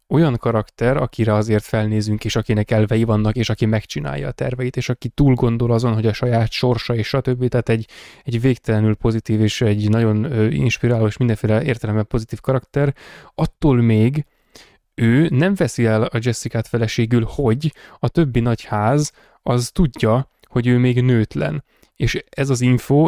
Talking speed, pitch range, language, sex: 165 wpm, 110-135 Hz, Hungarian, male